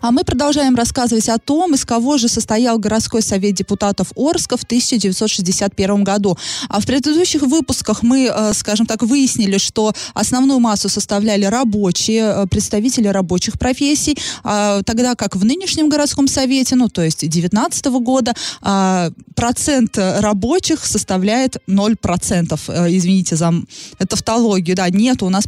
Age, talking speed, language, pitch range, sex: 20-39, 125 wpm, Russian, 200-255 Hz, female